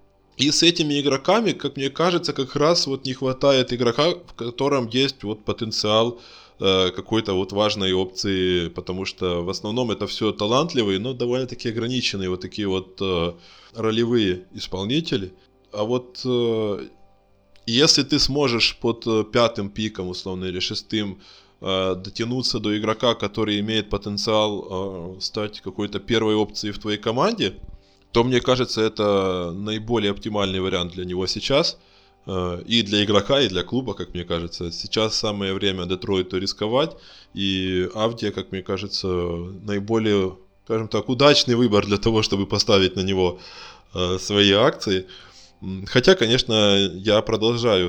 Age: 20-39